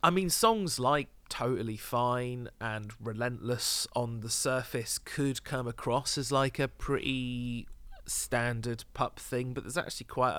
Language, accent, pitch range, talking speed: English, British, 100-125 Hz, 145 wpm